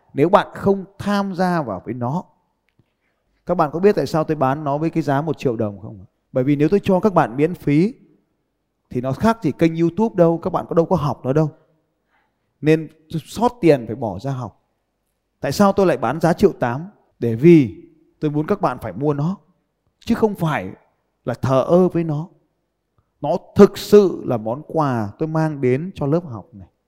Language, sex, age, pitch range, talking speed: Vietnamese, male, 20-39, 130-185 Hz, 210 wpm